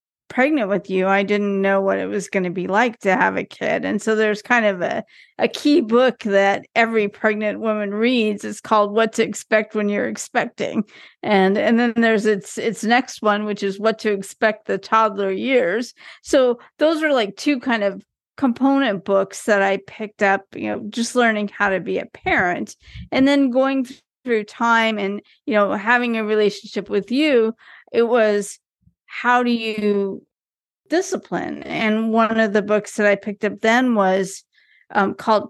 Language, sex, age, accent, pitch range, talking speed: English, female, 40-59, American, 205-245 Hz, 185 wpm